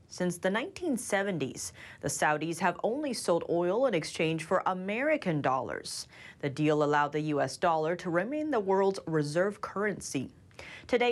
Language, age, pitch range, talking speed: English, 30-49, 155-245 Hz, 145 wpm